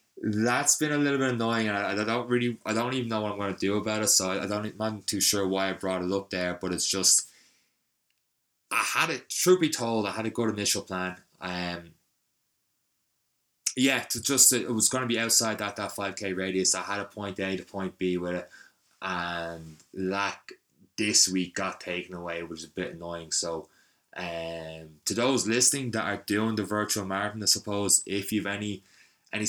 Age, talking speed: 20-39, 210 wpm